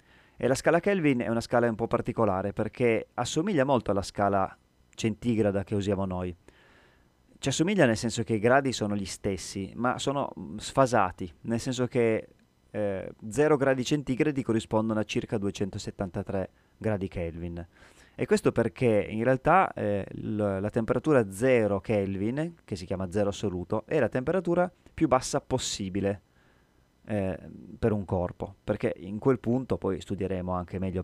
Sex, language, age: male, Italian, 30-49